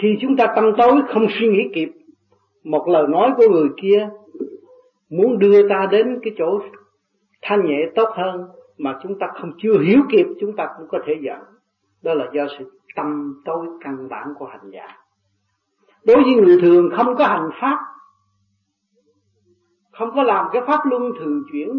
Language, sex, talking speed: Vietnamese, male, 180 wpm